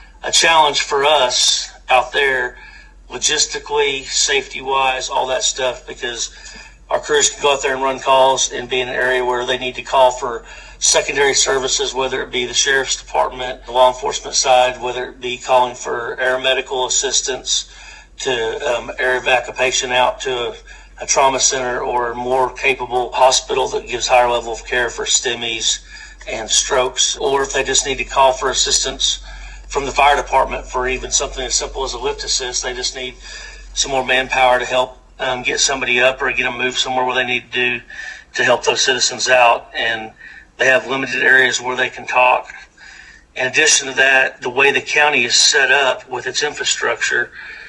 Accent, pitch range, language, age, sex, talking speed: American, 125-145 Hz, English, 50-69, male, 190 wpm